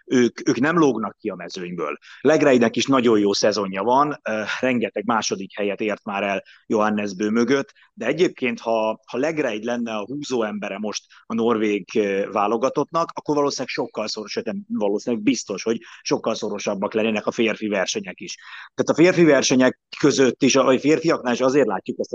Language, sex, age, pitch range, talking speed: Hungarian, male, 30-49, 110-130 Hz, 170 wpm